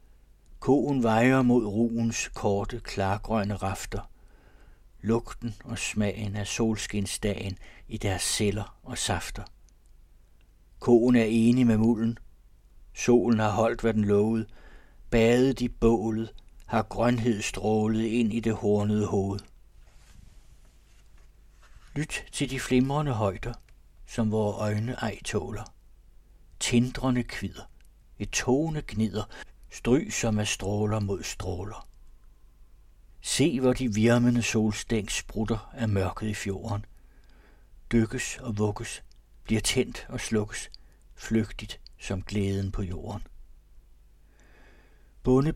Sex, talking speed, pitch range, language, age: male, 110 wpm, 100-115 Hz, Danish, 60-79